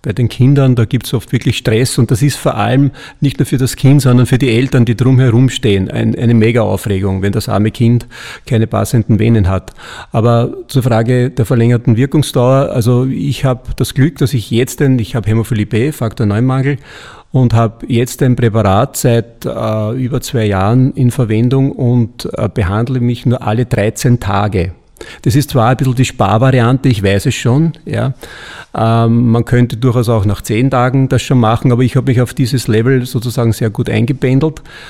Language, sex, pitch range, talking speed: German, male, 110-130 Hz, 195 wpm